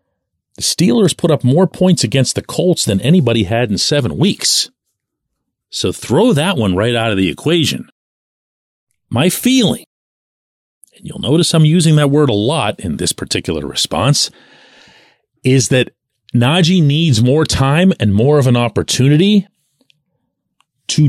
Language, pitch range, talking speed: English, 110-160 Hz, 145 wpm